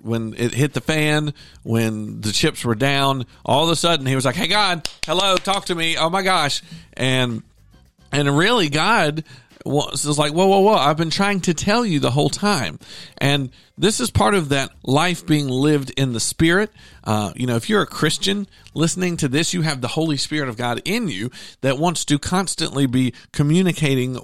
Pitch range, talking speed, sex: 125-170 Hz, 205 wpm, male